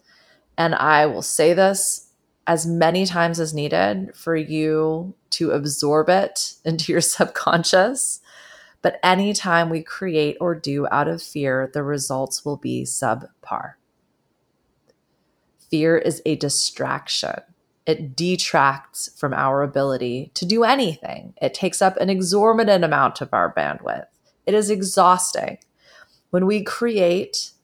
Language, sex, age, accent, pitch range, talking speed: English, female, 30-49, American, 155-195 Hz, 130 wpm